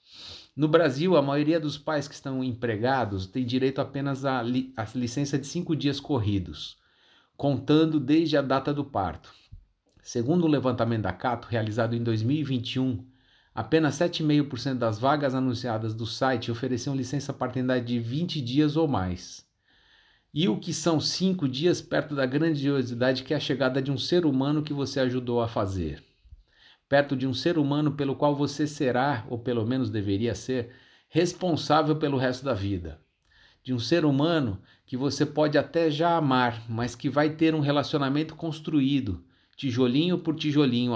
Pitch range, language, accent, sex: 120-150 Hz, Portuguese, Brazilian, male